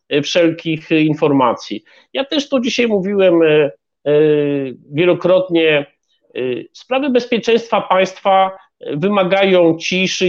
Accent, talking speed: native, 75 wpm